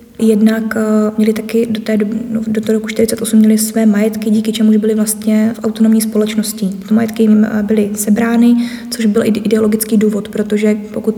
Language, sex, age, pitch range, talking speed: Czech, female, 20-39, 215-225 Hz, 155 wpm